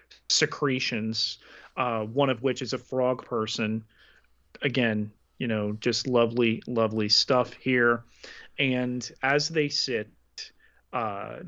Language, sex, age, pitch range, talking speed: English, male, 30-49, 115-185 Hz, 115 wpm